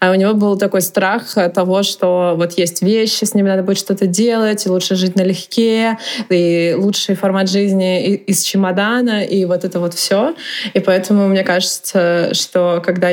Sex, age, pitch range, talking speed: female, 20-39, 170-195 Hz, 175 wpm